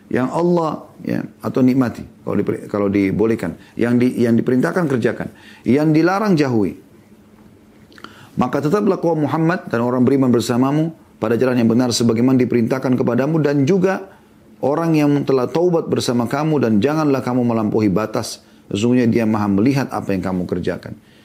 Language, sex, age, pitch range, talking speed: Indonesian, male, 40-59, 105-140 Hz, 145 wpm